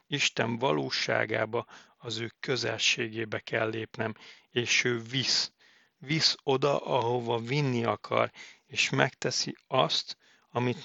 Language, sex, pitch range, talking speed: Hungarian, male, 110-125 Hz, 105 wpm